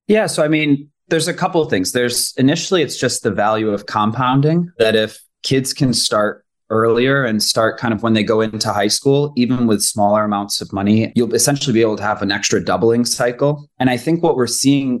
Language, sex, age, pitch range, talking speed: English, male, 20-39, 110-135 Hz, 220 wpm